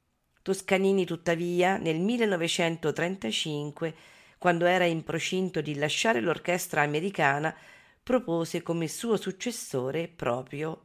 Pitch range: 160-205 Hz